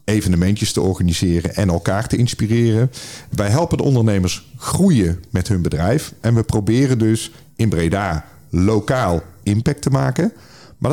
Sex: male